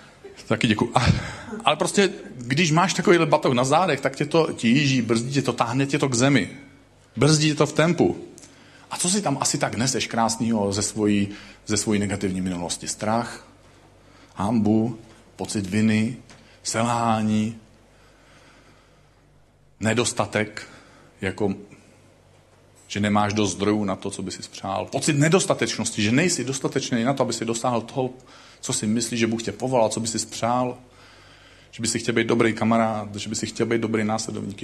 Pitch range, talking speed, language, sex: 105-130 Hz, 160 wpm, Czech, male